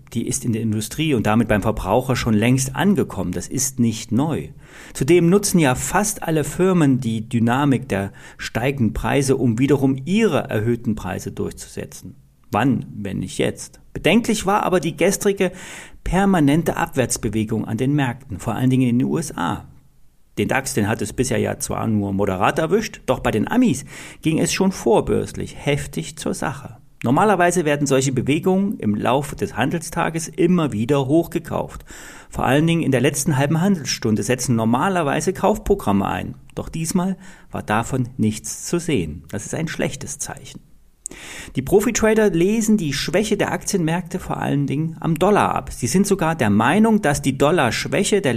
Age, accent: 40-59, German